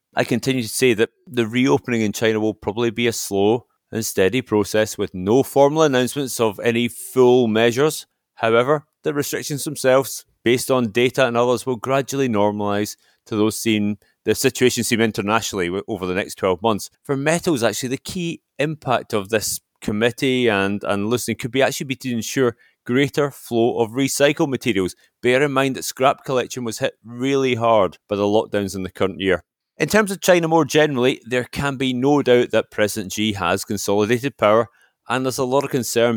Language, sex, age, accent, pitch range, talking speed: English, male, 30-49, British, 105-130 Hz, 185 wpm